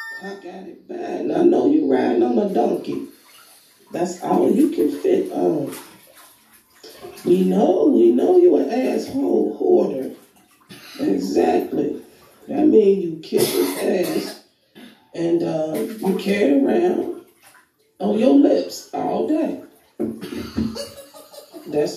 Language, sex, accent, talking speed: English, female, American, 120 wpm